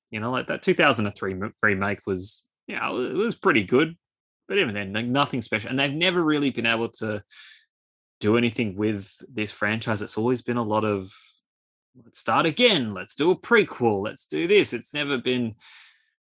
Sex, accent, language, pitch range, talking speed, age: male, Australian, English, 105-135 Hz, 190 wpm, 20-39